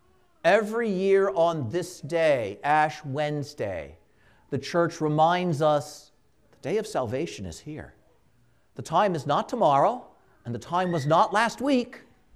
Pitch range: 160-230 Hz